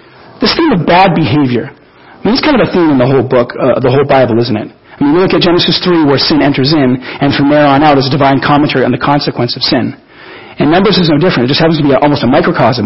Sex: male